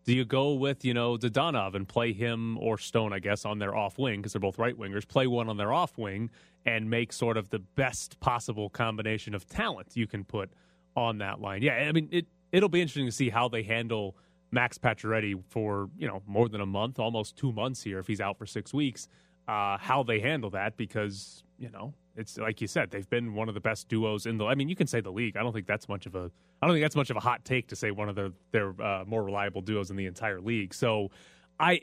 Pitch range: 100-130 Hz